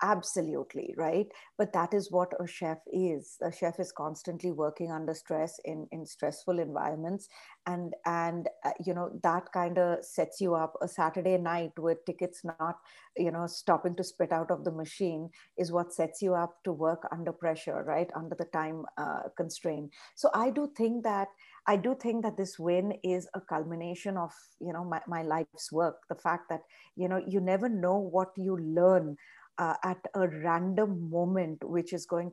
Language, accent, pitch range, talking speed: English, Indian, 165-190 Hz, 185 wpm